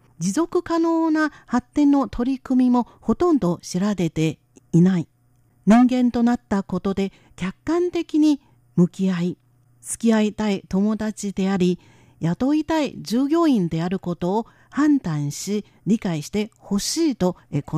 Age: 50-69